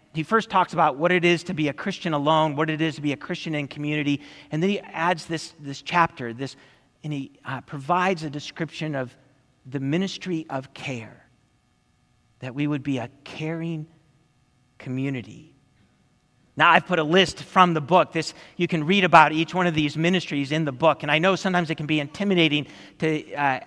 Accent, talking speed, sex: American, 200 wpm, male